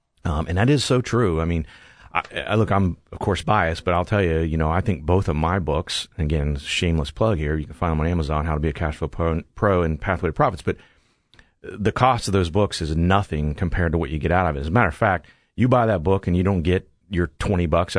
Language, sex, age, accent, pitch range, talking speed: English, male, 40-59, American, 80-105 Hz, 265 wpm